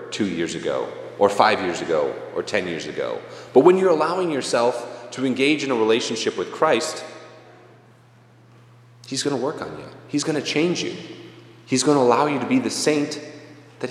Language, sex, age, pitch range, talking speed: English, male, 30-49, 115-165 Hz, 190 wpm